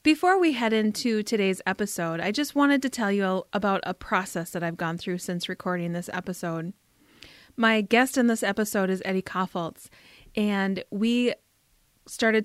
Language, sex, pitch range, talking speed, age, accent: English, female, 195-235 Hz, 165 wpm, 30-49, American